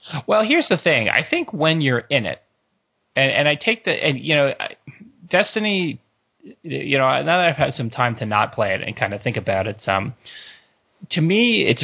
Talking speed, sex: 210 wpm, male